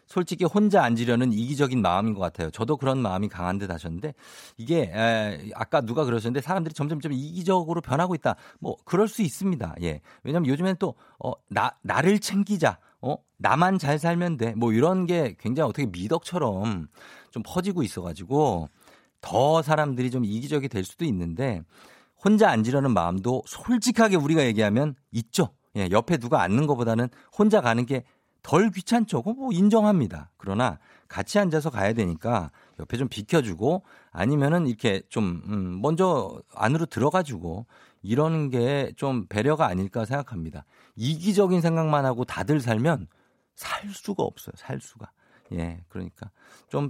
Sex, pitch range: male, 105-160 Hz